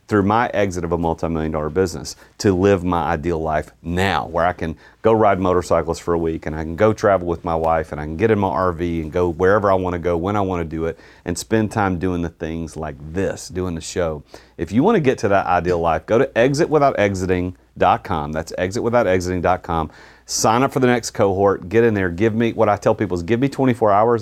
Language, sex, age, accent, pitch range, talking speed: English, male, 40-59, American, 85-115 Hz, 240 wpm